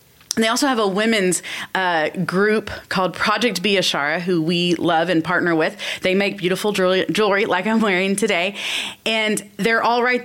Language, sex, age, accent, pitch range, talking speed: English, female, 30-49, American, 160-200 Hz, 175 wpm